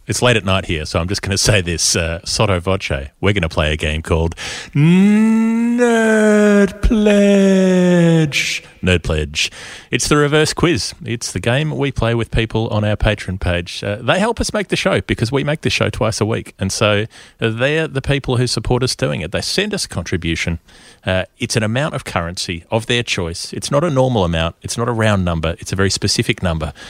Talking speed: 210 wpm